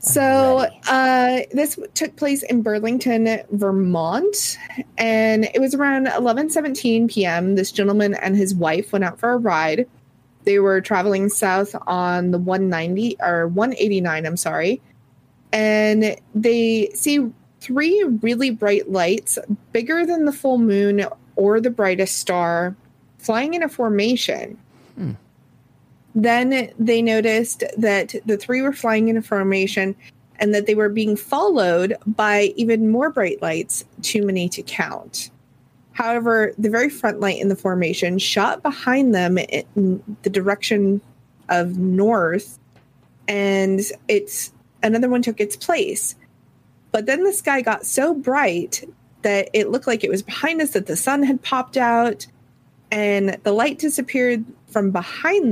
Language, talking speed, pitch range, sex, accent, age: English, 140 wpm, 195-250 Hz, female, American, 30-49